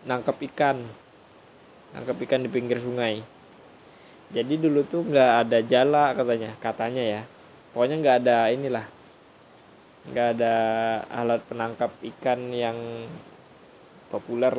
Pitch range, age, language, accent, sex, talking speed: 120-145 Hz, 10-29, Indonesian, native, male, 110 wpm